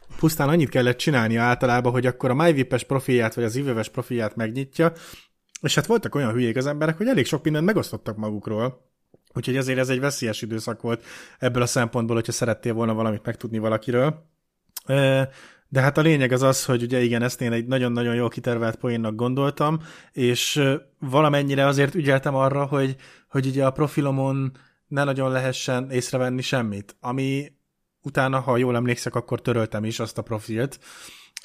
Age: 20-39